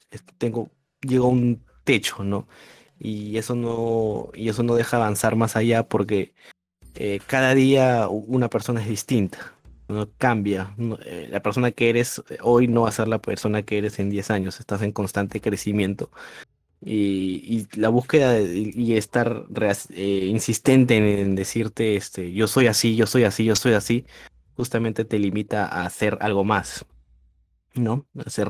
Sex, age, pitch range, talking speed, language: male, 20-39, 100-115 Hz, 170 wpm, Spanish